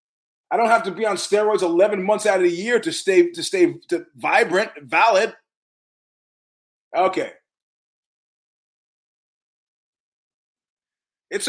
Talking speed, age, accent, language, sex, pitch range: 110 wpm, 30-49, American, English, male, 175-230 Hz